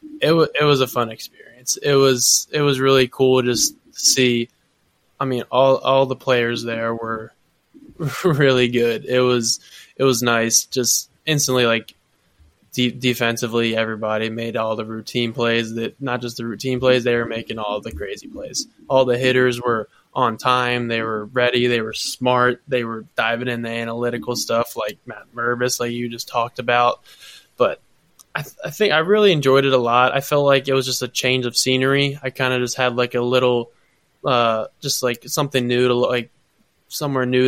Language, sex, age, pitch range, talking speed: English, male, 20-39, 115-130 Hz, 195 wpm